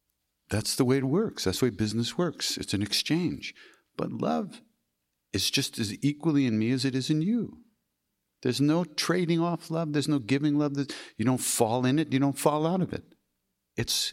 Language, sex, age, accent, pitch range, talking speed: English, male, 60-79, American, 75-115 Hz, 200 wpm